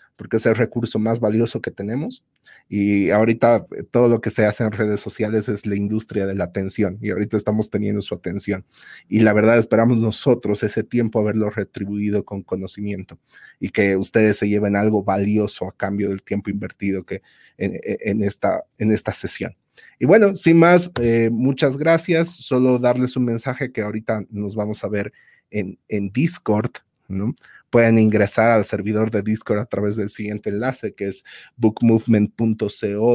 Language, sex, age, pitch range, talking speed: Spanish, male, 30-49, 105-115 Hz, 170 wpm